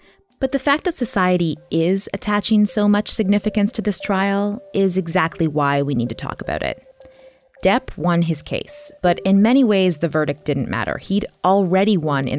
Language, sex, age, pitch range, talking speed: English, female, 20-39, 145-200 Hz, 185 wpm